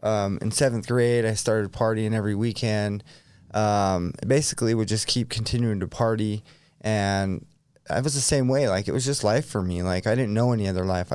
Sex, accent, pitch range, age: male, American, 100-120 Hz, 20-39